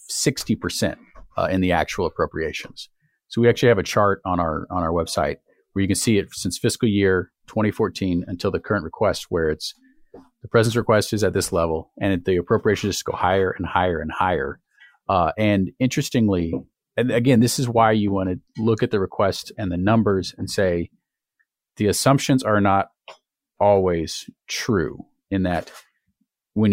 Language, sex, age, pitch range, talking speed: English, male, 40-59, 95-120 Hz, 175 wpm